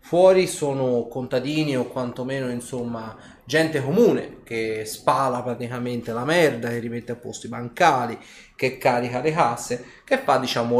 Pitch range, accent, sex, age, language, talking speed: 120-145 Hz, native, male, 30-49, Italian, 145 wpm